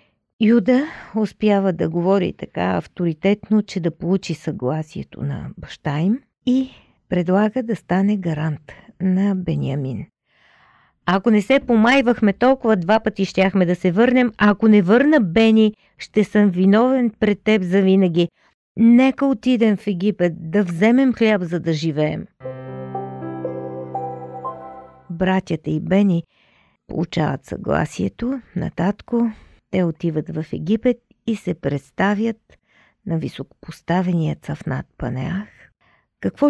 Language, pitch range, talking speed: Bulgarian, 165-220 Hz, 115 wpm